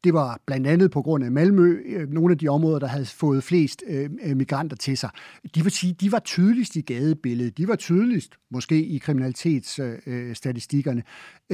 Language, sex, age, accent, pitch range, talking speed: Danish, male, 60-79, native, 145-185 Hz, 180 wpm